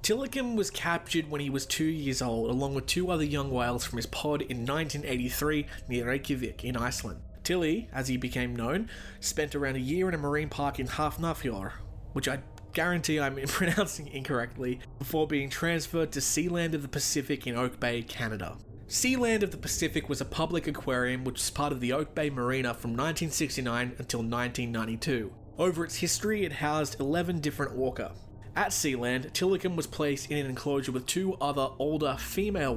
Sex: male